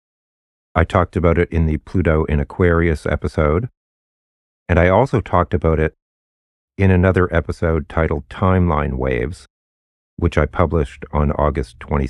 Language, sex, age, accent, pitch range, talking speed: English, male, 40-59, American, 70-90 Hz, 135 wpm